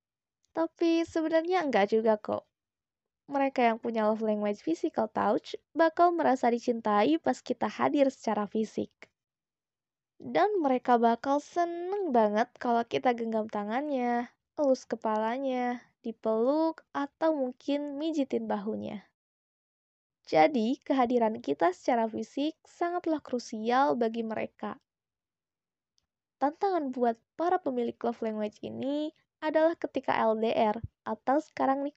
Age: 20-39